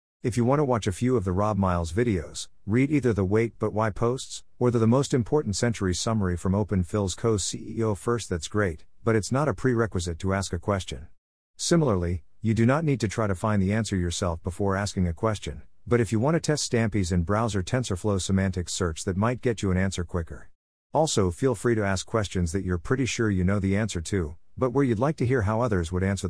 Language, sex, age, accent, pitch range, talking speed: English, male, 50-69, American, 90-115 Hz, 235 wpm